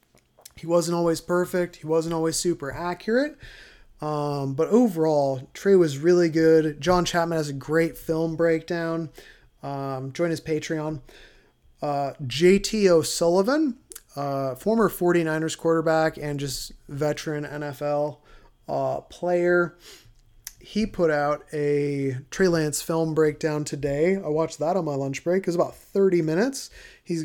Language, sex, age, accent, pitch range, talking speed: English, male, 20-39, American, 145-175 Hz, 135 wpm